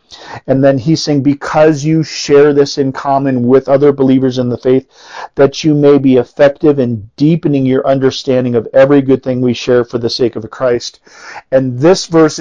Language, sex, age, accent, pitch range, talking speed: English, male, 40-59, American, 125-150 Hz, 190 wpm